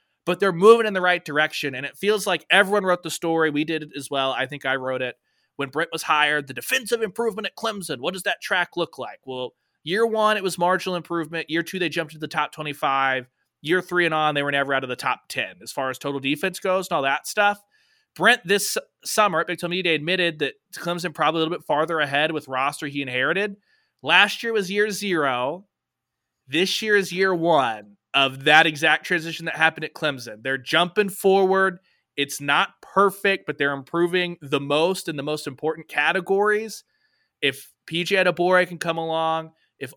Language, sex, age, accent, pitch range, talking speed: English, male, 20-39, American, 145-185 Hz, 205 wpm